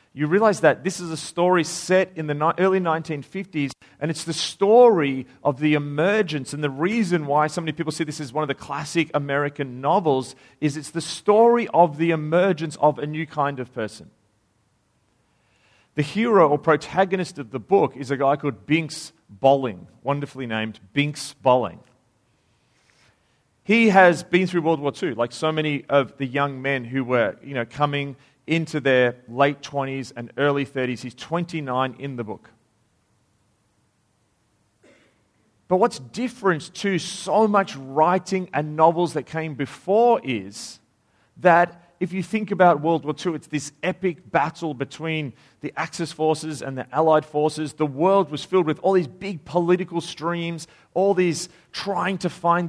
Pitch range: 140-175 Hz